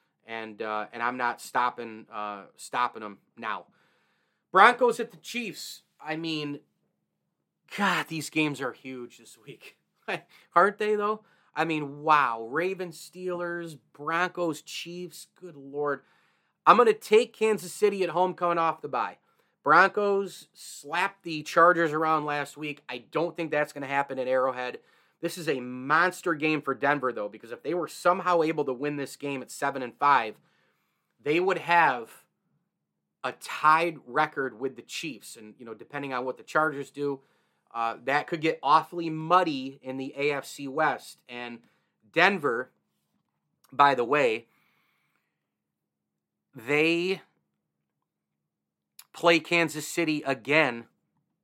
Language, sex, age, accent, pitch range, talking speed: English, male, 30-49, American, 125-170 Hz, 145 wpm